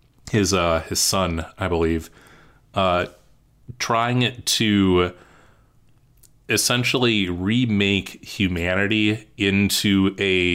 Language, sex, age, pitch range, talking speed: English, male, 30-49, 90-110 Hz, 80 wpm